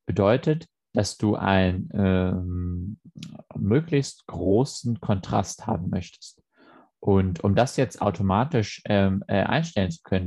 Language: German